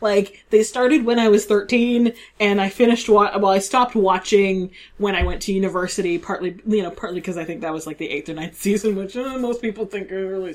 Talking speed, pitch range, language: 240 wpm, 185-240 Hz, English